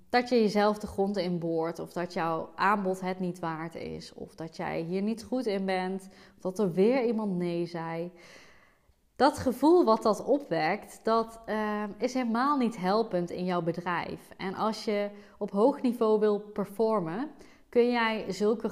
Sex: female